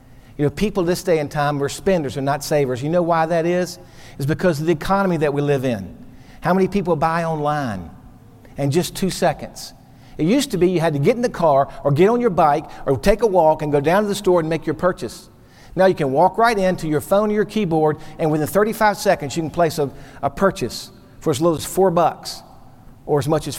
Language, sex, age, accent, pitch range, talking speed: English, male, 50-69, American, 140-190 Hz, 245 wpm